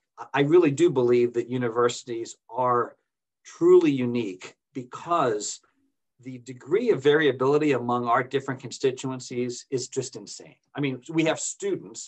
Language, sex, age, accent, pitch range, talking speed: English, male, 40-59, American, 130-175 Hz, 130 wpm